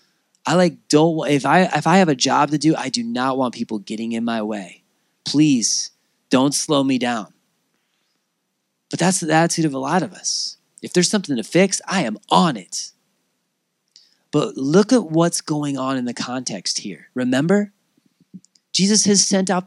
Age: 30-49